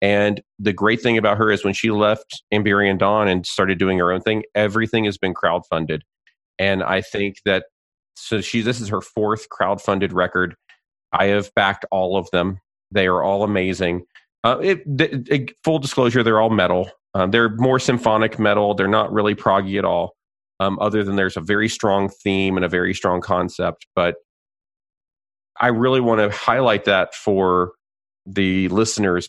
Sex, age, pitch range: male, 40-59, 95-110 Hz